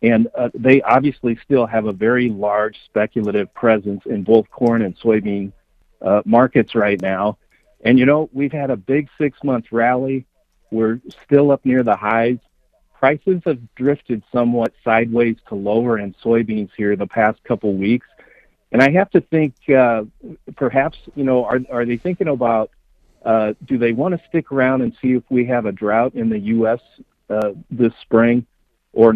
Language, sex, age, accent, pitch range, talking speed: English, male, 50-69, American, 105-130 Hz, 175 wpm